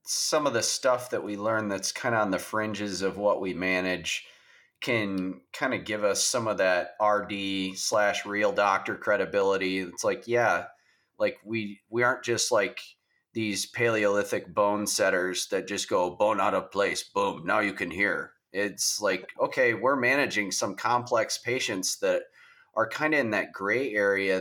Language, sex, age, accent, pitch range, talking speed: English, male, 30-49, American, 90-110 Hz, 175 wpm